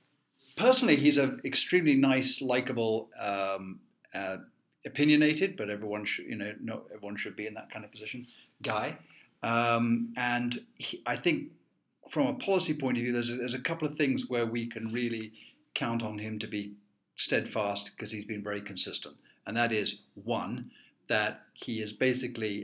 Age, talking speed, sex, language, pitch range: 50-69, 170 wpm, male, English, 105-130 Hz